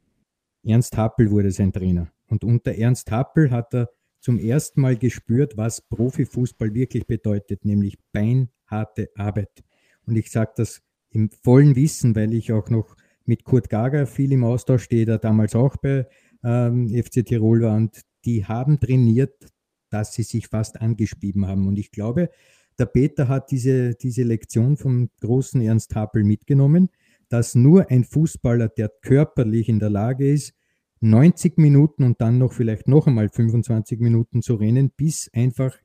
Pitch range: 110-130 Hz